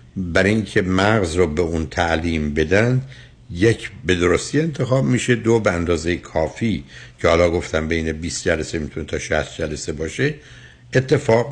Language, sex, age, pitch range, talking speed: Persian, male, 60-79, 85-125 Hz, 150 wpm